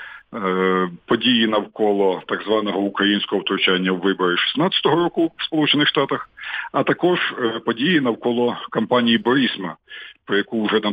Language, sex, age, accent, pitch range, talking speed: Ukrainian, male, 50-69, native, 100-125 Hz, 125 wpm